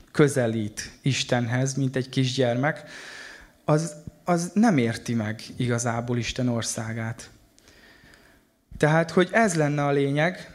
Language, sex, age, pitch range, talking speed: Hungarian, male, 20-39, 125-160 Hz, 110 wpm